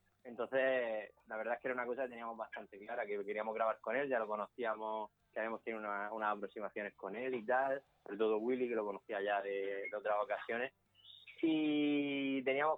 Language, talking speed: Spanish, 200 wpm